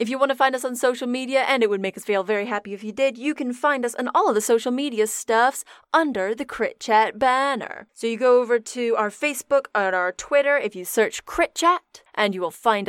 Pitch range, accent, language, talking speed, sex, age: 210-285 Hz, American, English, 255 wpm, female, 20-39